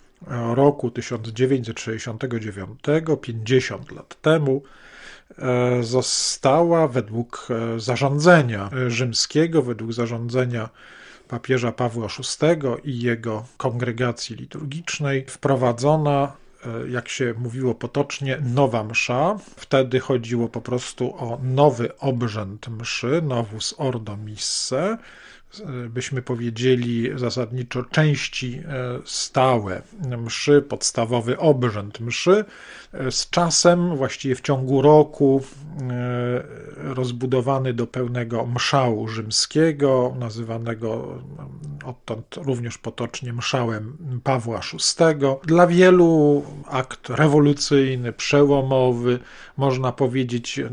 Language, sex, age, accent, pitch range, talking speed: Polish, male, 40-59, native, 120-140 Hz, 85 wpm